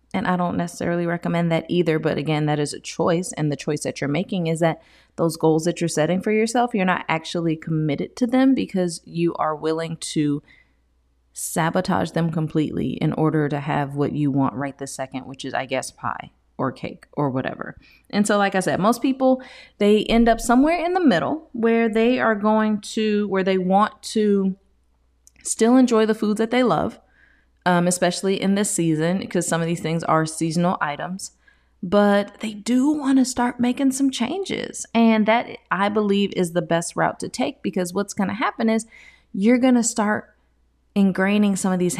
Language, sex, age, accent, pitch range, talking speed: English, female, 30-49, American, 160-215 Hz, 195 wpm